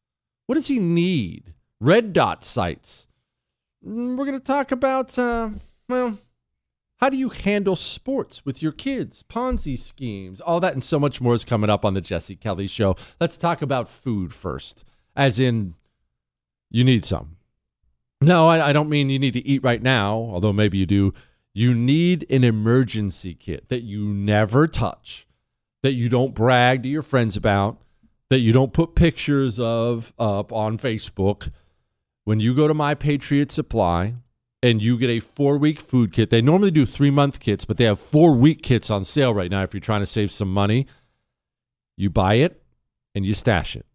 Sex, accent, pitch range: male, American, 105-150 Hz